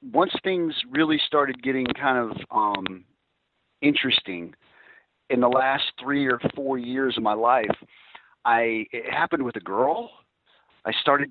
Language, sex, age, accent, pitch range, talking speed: English, male, 40-59, American, 115-140 Hz, 145 wpm